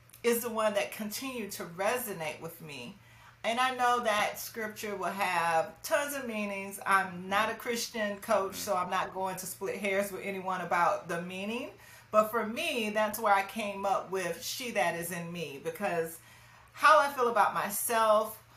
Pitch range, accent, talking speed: 175-235 Hz, American, 180 wpm